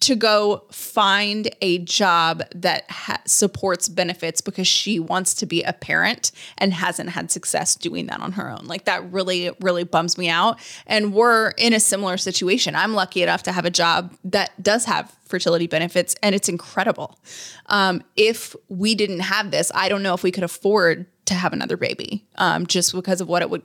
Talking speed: 195 wpm